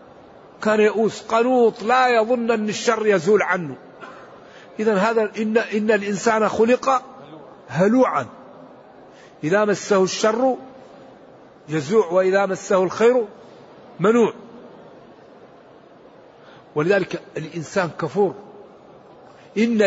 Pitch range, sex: 185-220 Hz, male